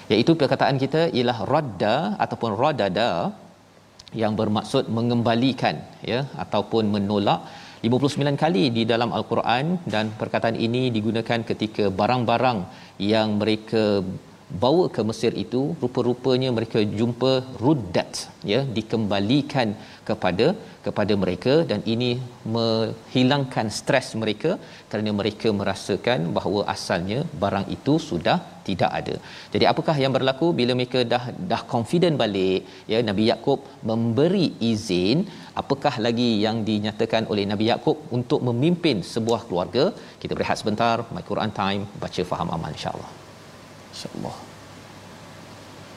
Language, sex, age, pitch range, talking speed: Malayalam, male, 40-59, 110-130 Hz, 120 wpm